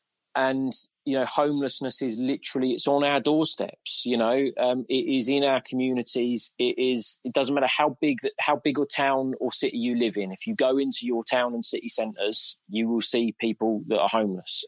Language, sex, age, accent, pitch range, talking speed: English, male, 20-39, British, 115-135 Hz, 210 wpm